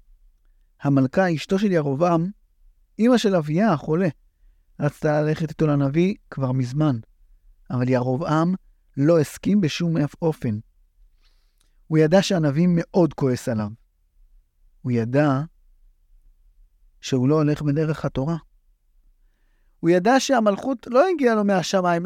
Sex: male